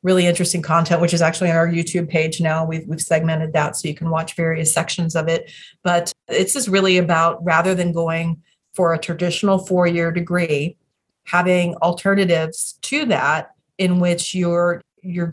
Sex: female